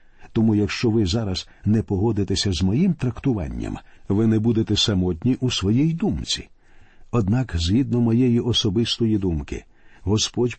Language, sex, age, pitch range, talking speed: Ukrainian, male, 50-69, 105-135 Hz, 125 wpm